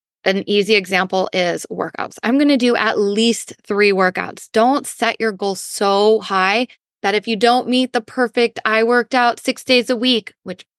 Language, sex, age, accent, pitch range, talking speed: English, female, 20-39, American, 200-240 Hz, 190 wpm